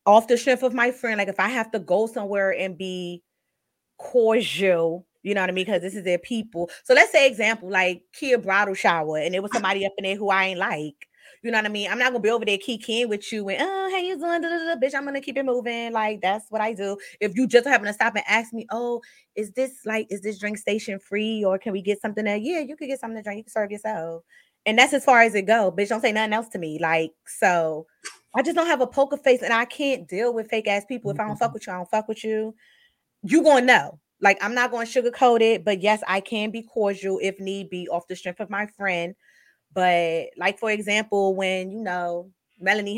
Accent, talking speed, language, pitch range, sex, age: American, 260 wpm, English, 190-240 Hz, female, 20-39